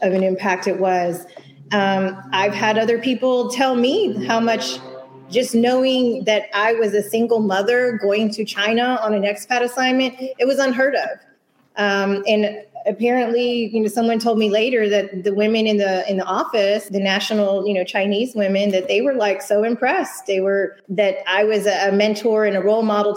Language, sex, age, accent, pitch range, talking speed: English, female, 30-49, American, 190-215 Hz, 190 wpm